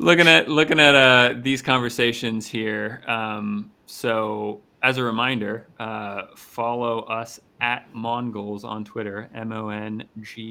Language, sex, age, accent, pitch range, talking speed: English, male, 30-49, American, 100-115 Hz, 135 wpm